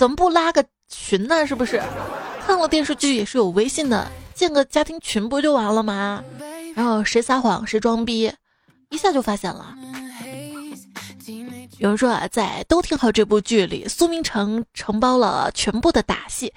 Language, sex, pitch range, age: Chinese, female, 215-320 Hz, 20-39